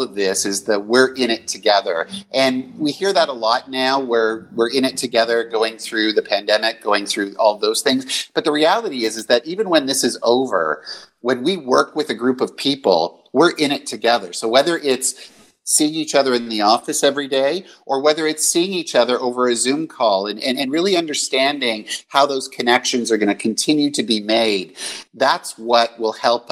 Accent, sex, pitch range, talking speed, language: American, male, 105-135 Hz, 210 wpm, English